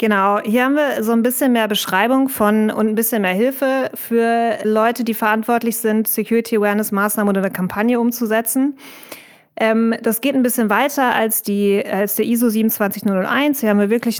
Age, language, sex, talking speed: 20-39, German, female, 175 wpm